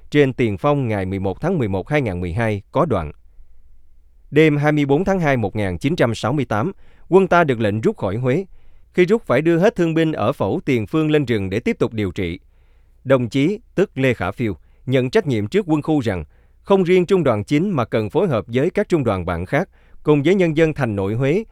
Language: Vietnamese